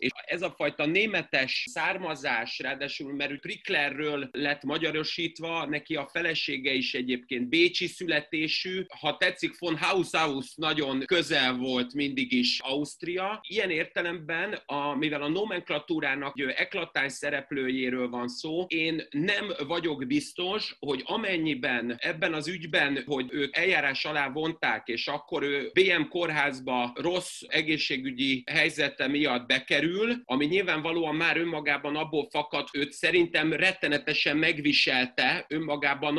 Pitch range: 140-170 Hz